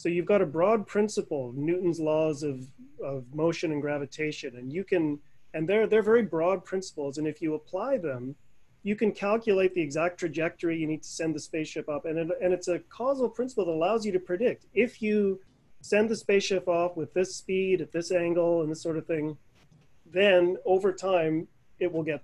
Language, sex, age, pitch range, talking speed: English, male, 30-49, 155-195 Hz, 200 wpm